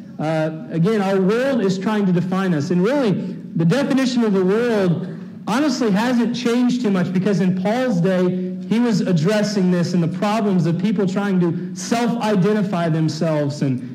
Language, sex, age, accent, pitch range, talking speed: English, male, 40-59, American, 170-215 Hz, 170 wpm